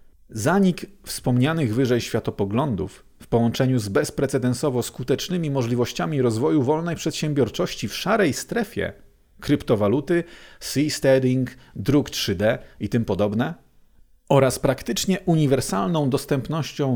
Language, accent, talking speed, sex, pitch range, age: Polish, native, 95 wpm, male, 110-145 Hz, 40-59